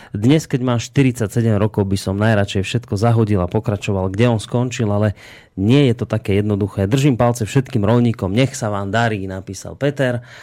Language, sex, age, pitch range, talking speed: Slovak, male, 30-49, 100-125 Hz, 180 wpm